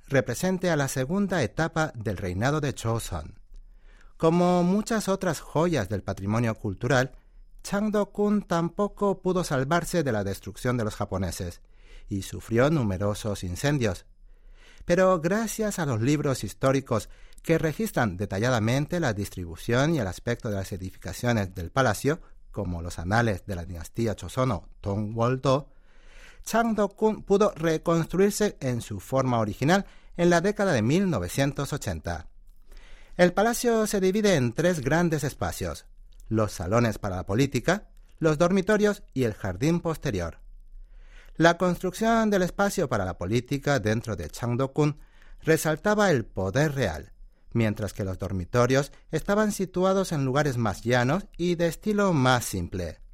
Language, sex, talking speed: Spanish, male, 135 wpm